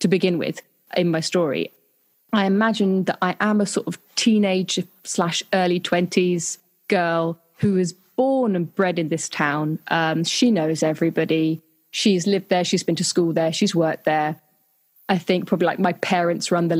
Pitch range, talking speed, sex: 170-200 Hz, 180 wpm, female